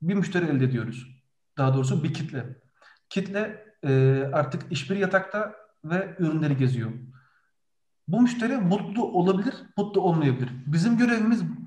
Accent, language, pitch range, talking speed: native, Turkish, 145-195 Hz, 125 wpm